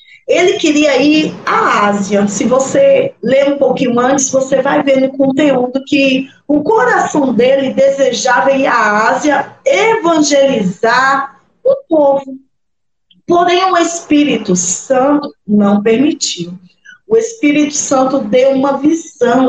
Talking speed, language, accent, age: 120 wpm, Portuguese, Brazilian, 20-39